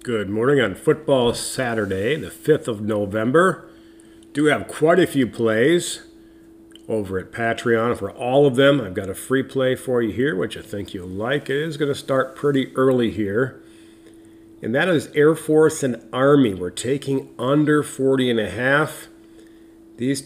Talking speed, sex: 170 wpm, male